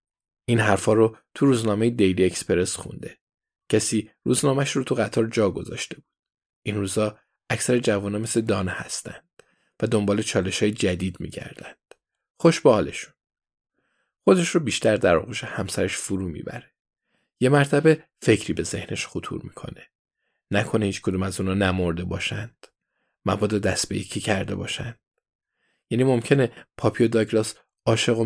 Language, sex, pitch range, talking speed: Persian, male, 95-115 Hz, 135 wpm